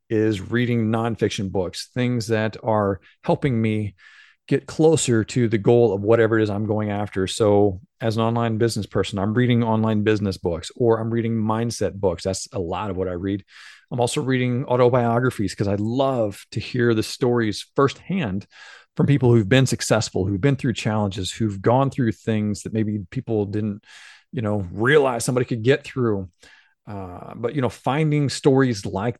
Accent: American